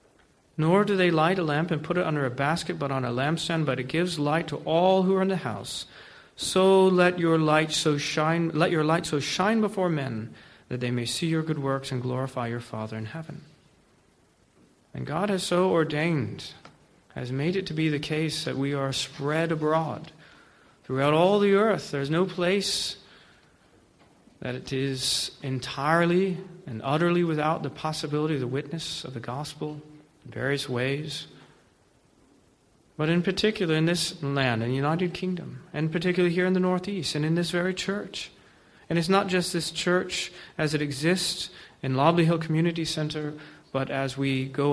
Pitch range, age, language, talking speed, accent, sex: 140-175 Hz, 40-59, English, 180 wpm, American, male